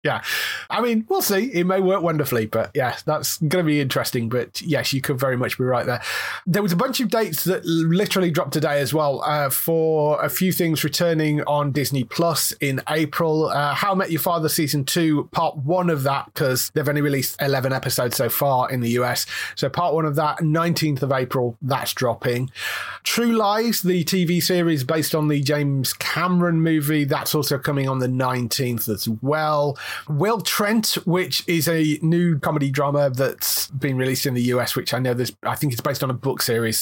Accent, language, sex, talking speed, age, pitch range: British, English, male, 200 wpm, 30-49, 130-170 Hz